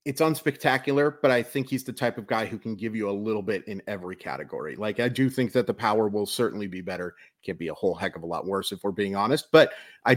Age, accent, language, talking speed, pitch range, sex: 30-49, American, English, 275 wpm, 105-140 Hz, male